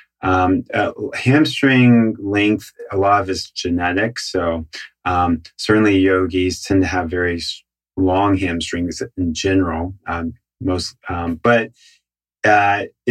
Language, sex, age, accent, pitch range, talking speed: English, male, 30-49, American, 90-105 Hz, 120 wpm